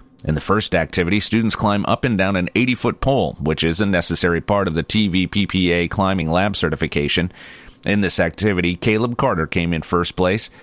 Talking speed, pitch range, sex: 180 wpm, 85-105 Hz, male